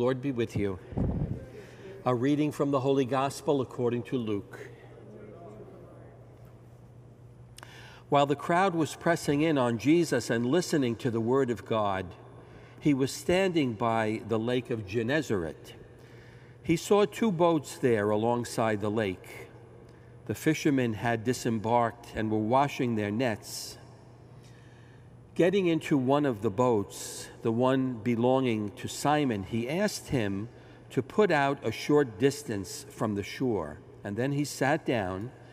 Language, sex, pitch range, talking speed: English, male, 115-140 Hz, 135 wpm